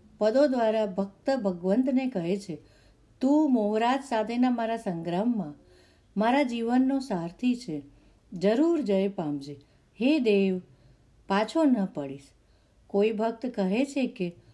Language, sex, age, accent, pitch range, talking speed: Gujarati, female, 50-69, native, 180-260 Hz, 115 wpm